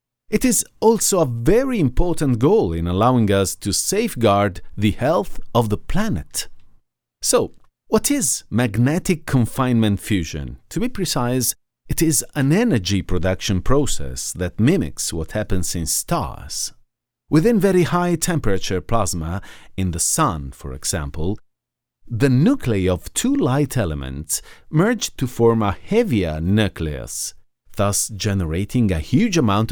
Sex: male